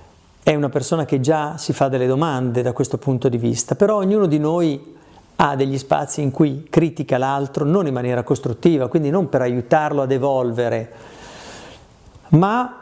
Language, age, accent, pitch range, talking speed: Italian, 40-59, native, 125-160 Hz, 170 wpm